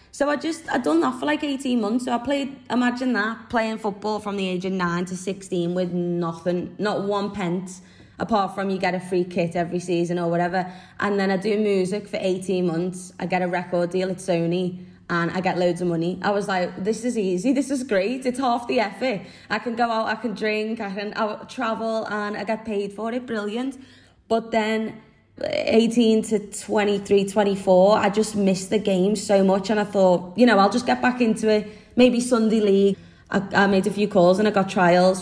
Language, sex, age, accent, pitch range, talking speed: English, female, 20-39, British, 180-220 Hz, 215 wpm